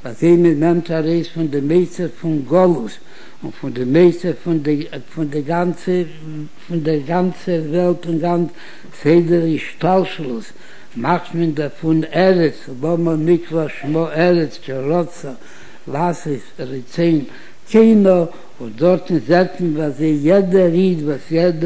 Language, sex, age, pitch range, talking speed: Hebrew, male, 60-79, 150-175 Hz, 135 wpm